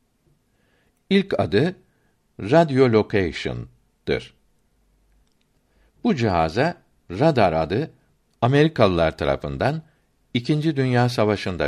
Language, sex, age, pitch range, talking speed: Turkish, male, 60-79, 100-135 Hz, 65 wpm